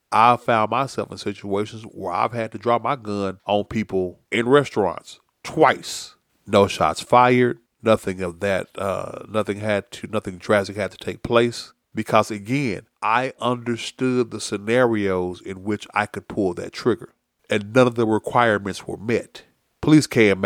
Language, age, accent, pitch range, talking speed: English, 30-49, American, 100-120 Hz, 160 wpm